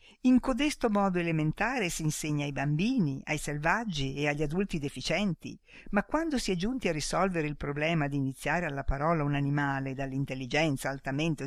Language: Italian